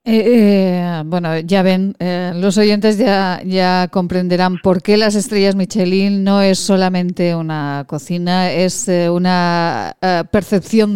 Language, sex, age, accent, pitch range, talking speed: Spanish, female, 40-59, Spanish, 175-210 Hz, 140 wpm